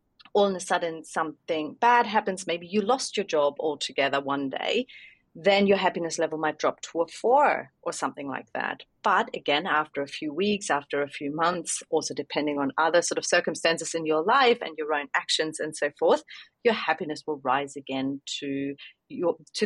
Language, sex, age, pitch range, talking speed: English, female, 30-49, 160-210 Hz, 190 wpm